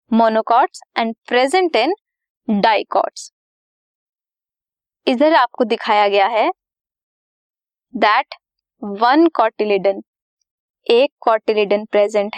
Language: English